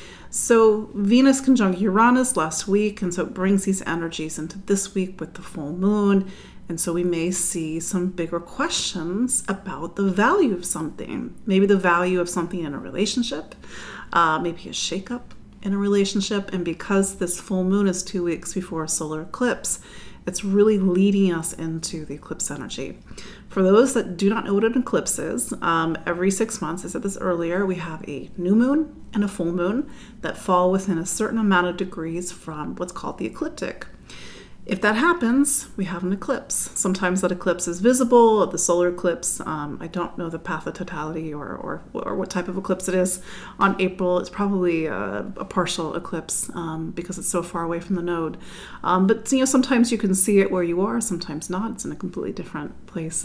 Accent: American